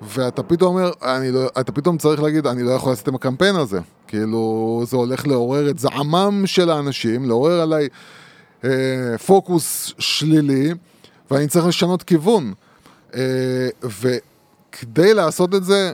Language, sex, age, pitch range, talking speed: Hebrew, male, 20-39, 125-170 Hz, 140 wpm